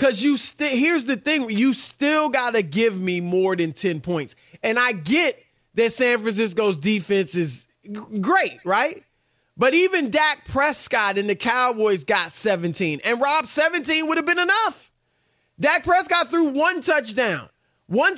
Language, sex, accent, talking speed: English, male, American, 160 wpm